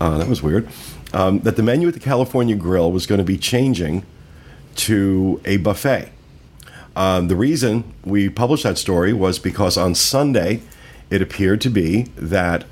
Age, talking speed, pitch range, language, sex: 50-69, 170 wpm, 85-105 Hz, English, male